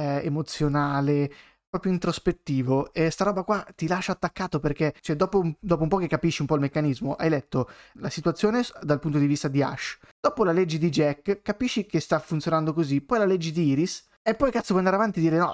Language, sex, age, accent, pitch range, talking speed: Italian, male, 20-39, native, 145-175 Hz, 215 wpm